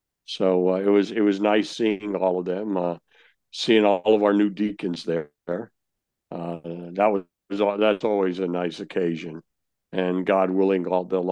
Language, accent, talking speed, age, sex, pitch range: English, American, 170 wpm, 60-79, male, 90-100 Hz